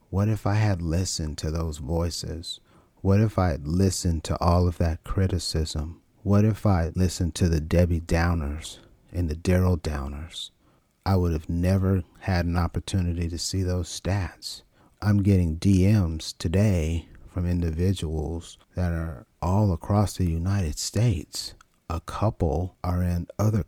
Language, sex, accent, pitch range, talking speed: English, male, American, 85-100 Hz, 150 wpm